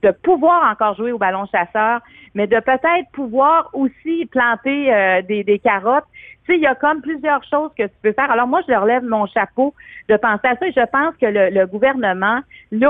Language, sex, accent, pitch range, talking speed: French, female, Canadian, 205-265 Hz, 225 wpm